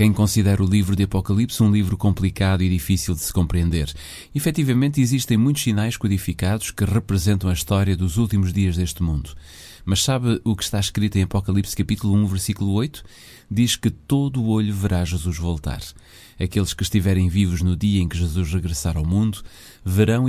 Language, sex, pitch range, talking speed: Portuguese, male, 90-110 Hz, 180 wpm